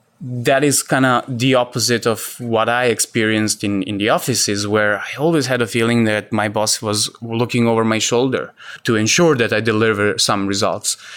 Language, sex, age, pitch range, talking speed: English, male, 20-39, 110-130 Hz, 190 wpm